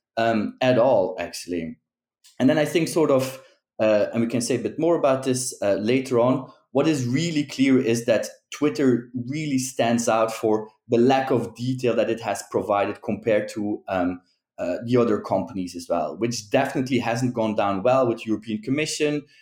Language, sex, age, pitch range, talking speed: English, male, 20-39, 115-140 Hz, 185 wpm